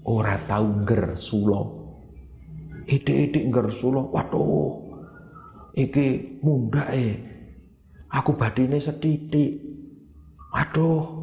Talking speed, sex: 75 wpm, male